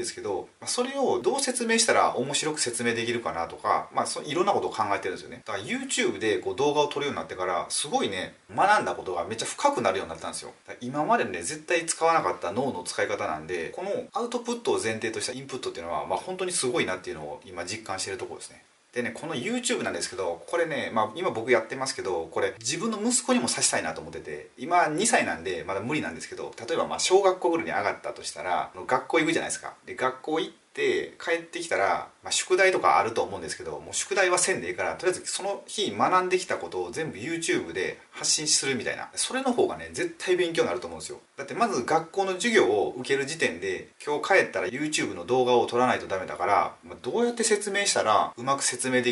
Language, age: Japanese, 30-49